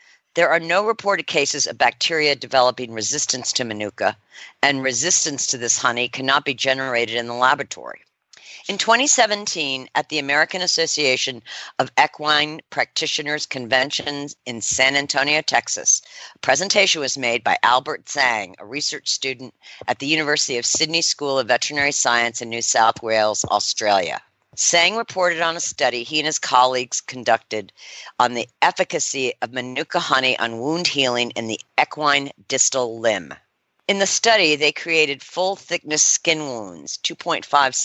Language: English